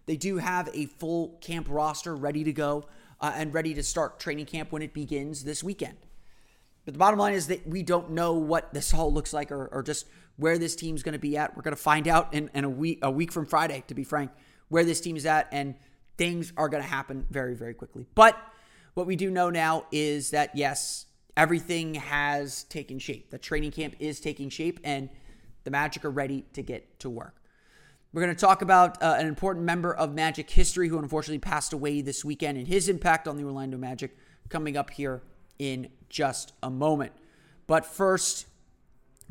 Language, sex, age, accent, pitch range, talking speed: English, male, 30-49, American, 145-170 Hz, 210 wpm